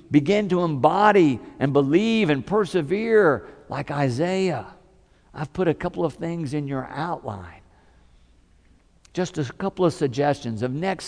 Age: 50-69